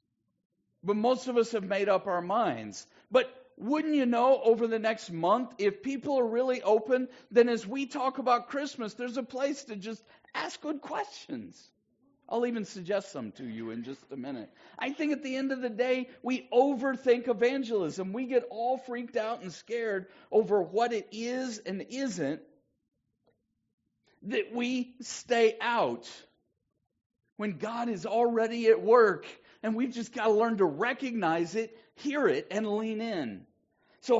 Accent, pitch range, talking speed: American, 205-255 Hz, 165 wpm